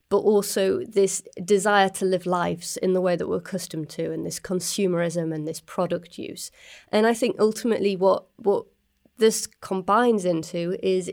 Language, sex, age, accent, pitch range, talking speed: English, female, 30-49, British, 175-200 Hz, 165 wpm